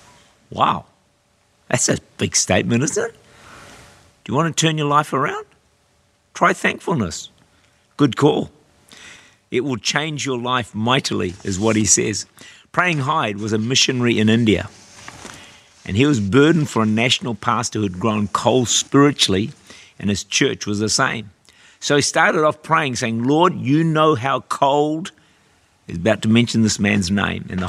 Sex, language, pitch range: male, English, 105-140 Hz